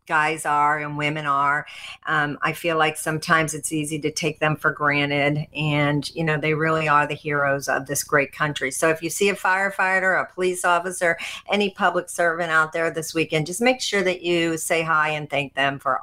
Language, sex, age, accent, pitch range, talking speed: English, female, 50-69, American, 150-185 Hz, 210 wpm